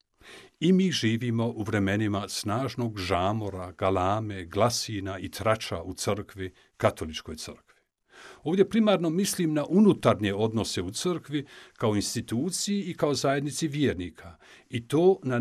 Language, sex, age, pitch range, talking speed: Croatian, male, 50-69, 100-150 Hz, 125 wpm